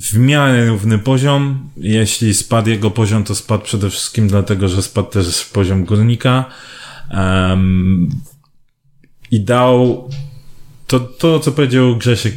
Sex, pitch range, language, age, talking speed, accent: male, 105-130 Hz, Polish, 30-49, 130 wpm, native